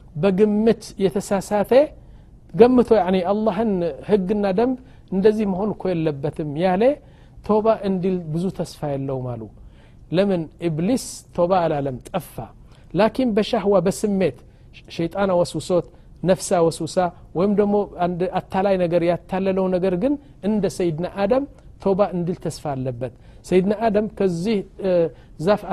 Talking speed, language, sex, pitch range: 110 wpm, Amharic, male, 155-200 Hz